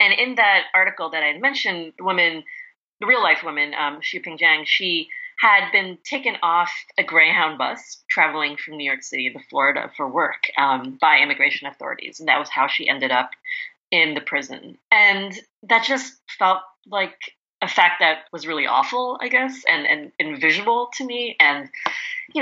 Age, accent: 30-49, American